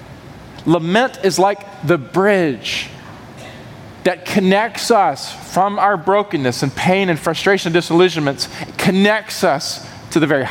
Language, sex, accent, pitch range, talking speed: English, male, American, 135-195 Hz, 125 wpm